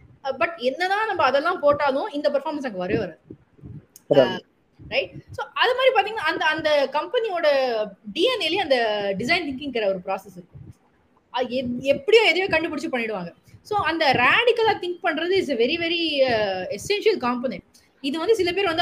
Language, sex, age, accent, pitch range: Tamil, female, 20-39, native, 220-330 Hz